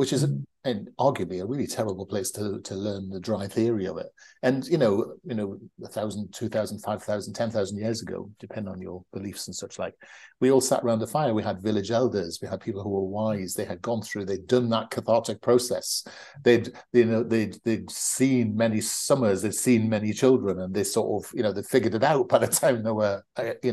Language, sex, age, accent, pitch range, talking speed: English, male, 50-69, British, 100-125 Hz, 235 wpm